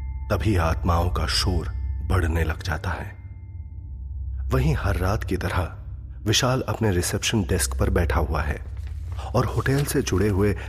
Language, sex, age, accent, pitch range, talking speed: Hindi, male, 30-49, native, 80-100 Hz, 145 wpm